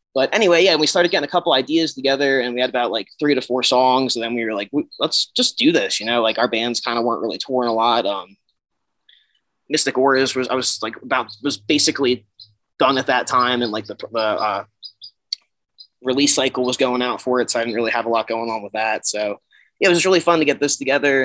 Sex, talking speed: male, 245 wpm